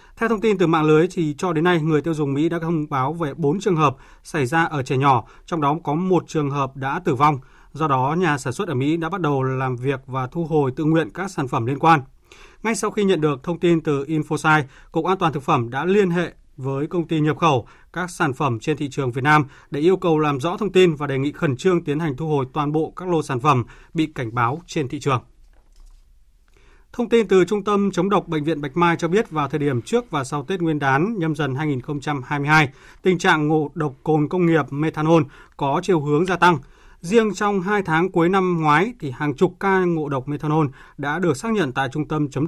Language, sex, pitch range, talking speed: Vietnamese, male, 140-175 Hz, 245 wpm